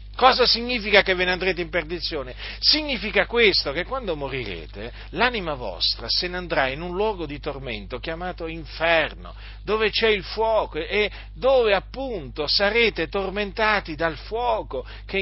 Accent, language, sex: native, Italian, male